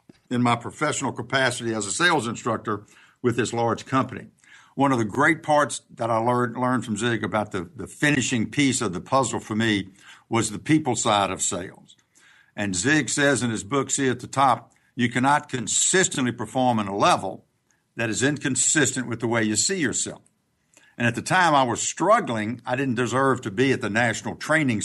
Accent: American